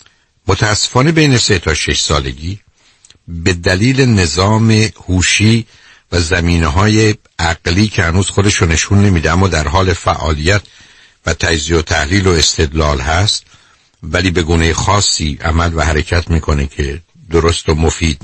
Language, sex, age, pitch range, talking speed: Persian, male, 60-79, 80-105 Hz, 135 wpm